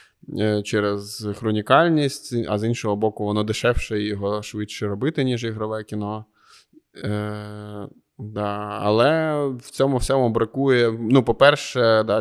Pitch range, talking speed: 105-120 Hz, 125 wpm